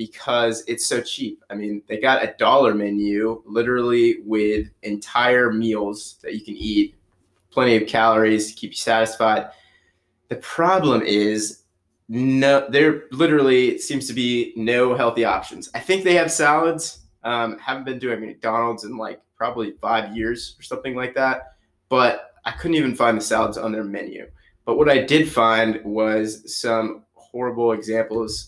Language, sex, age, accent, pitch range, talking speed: English, male, 20-39, American, 100-120 Hz, 160 wpm